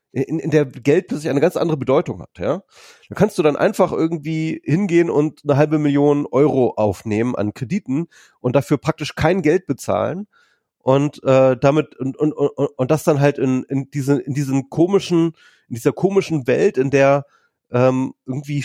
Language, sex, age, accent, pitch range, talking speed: German, male, 30-49, German, 125-155 Hz, 180 wpm